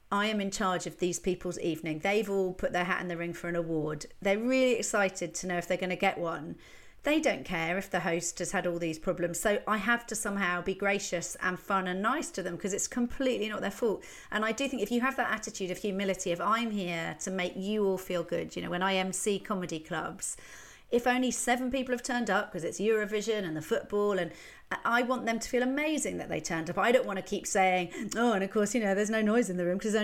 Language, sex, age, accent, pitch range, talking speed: English, female, 40-59, British, 180-225 Hz, 260 wpm